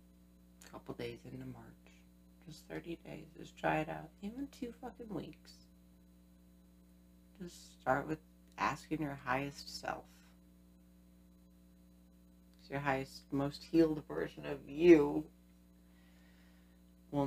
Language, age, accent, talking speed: English, 40-59, American, 105 wpm